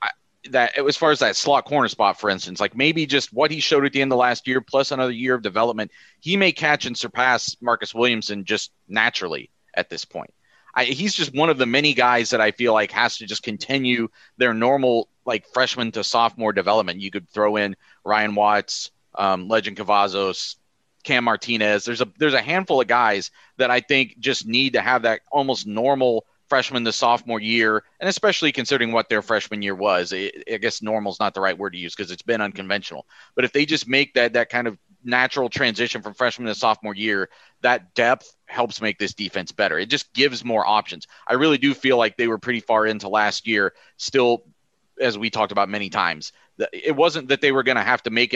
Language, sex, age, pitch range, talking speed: English, male, 30-49, 105-130 Hz, 215 wpm